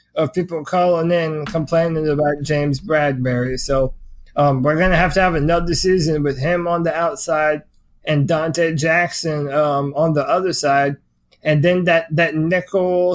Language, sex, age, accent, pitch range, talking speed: English, male, 20-39, American, 150-175 Hz, 170 wpm